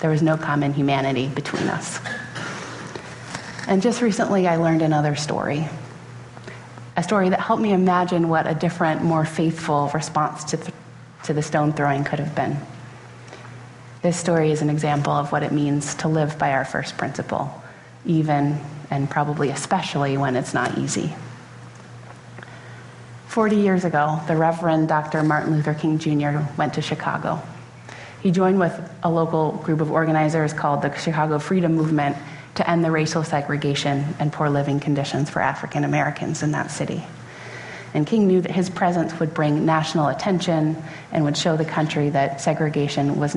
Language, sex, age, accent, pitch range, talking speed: English, female, 30-49, American, 145-165 Hz, 160 wpm